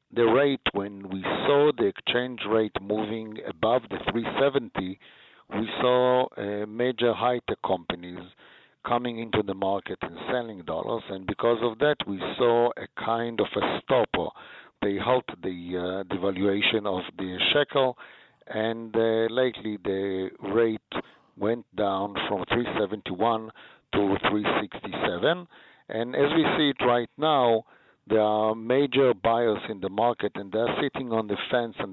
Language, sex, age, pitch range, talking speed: English, male, 50-69, 100-120 Hz, 145 wpm